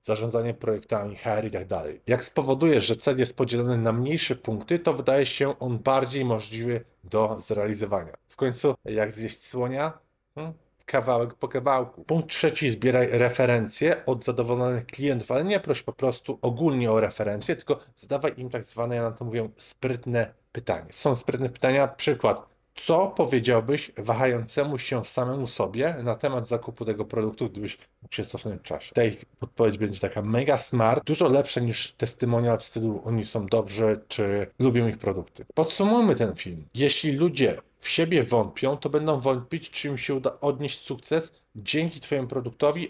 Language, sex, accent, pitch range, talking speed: Polish, male, native, 115-140 Hz, 165 wpm